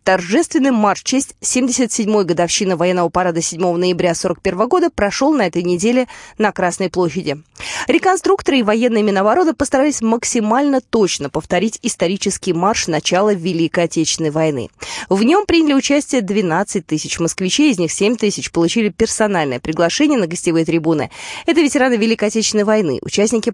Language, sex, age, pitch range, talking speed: Russian, female, 20-39, 170-240 Hz, 140 wpm